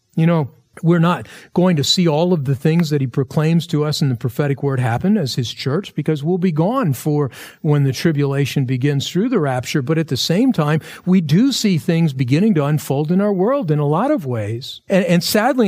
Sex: male